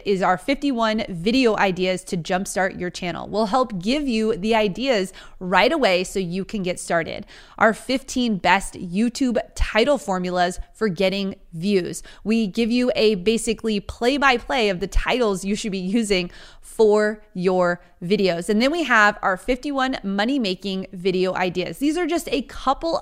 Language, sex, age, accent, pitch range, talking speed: English, female, 30-49, American, 185-230 Hz, 160 wpm